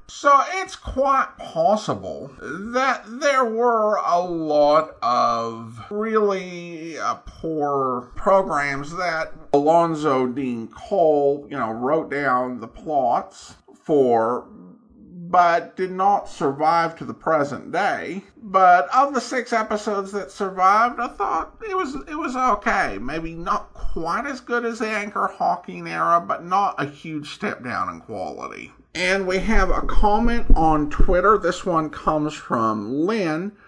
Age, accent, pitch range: 50-69, American, 145-220 Hz